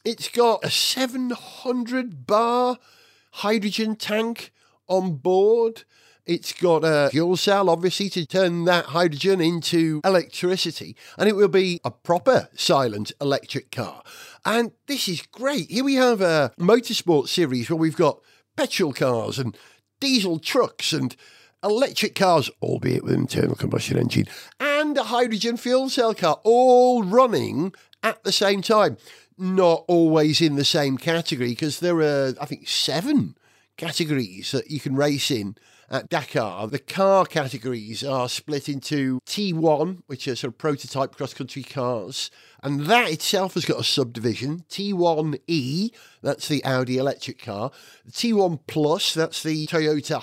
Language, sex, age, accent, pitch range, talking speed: English, male, 50-69, British, 145-215 Hz, 145 wpm